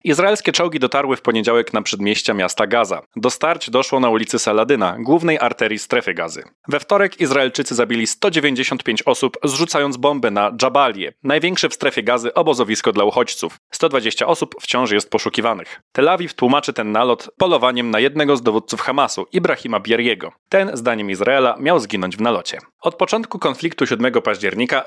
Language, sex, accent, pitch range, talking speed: Polish, male, native, 120-155 Hz, 160 wpm